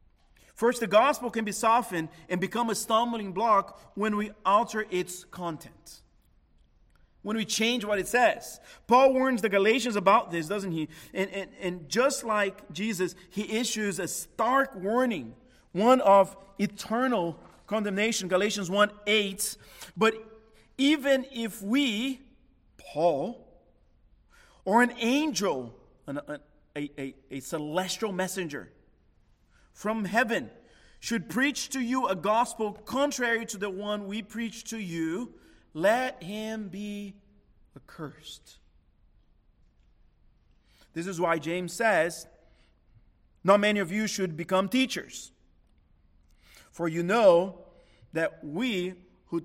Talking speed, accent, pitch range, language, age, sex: 120 wpm, American, 165-225 Hz, English, 40-59, male